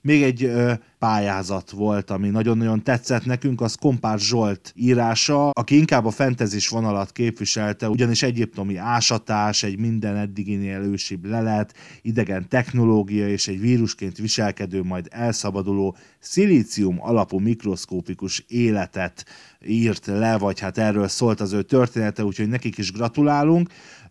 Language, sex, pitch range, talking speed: Hungarian, male, 100-125 Hz, 130 wpm